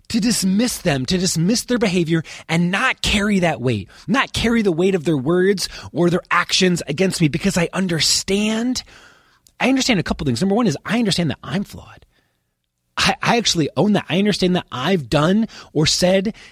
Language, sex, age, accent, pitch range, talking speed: English, male, 20-39, American, 160-220 Hz, 185 wpm